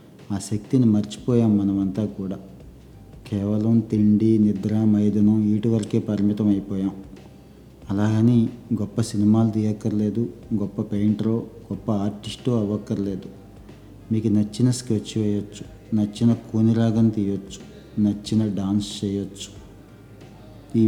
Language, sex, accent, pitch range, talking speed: Telugu, male, native, 100-110 Hz, 100 wpm